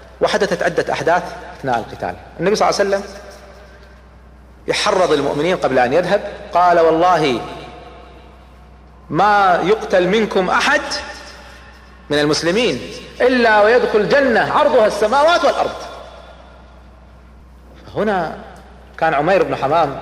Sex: male